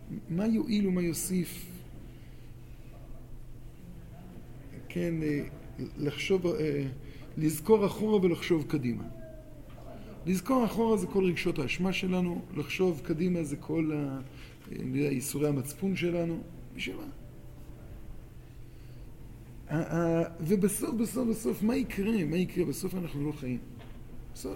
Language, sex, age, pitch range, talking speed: Hebrew, male, 50-69, 125-180 Hz, 75 wpm